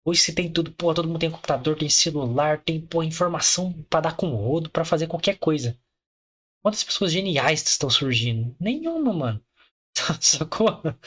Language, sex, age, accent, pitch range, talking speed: Portuguese, male, 20-39, Brazilian, 130-175 Hz, 170 wpm